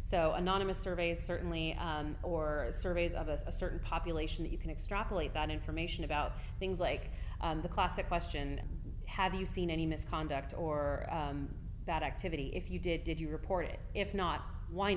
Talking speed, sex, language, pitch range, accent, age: 175 wpm, female, English, 145-190 Hz, American, 30-49